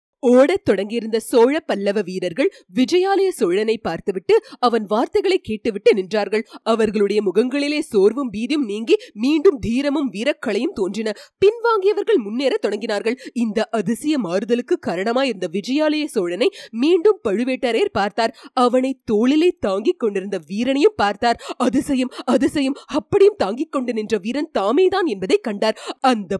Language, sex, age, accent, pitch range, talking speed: Tamil, female, 30-49, native, 220-310 Hz, 100 wpm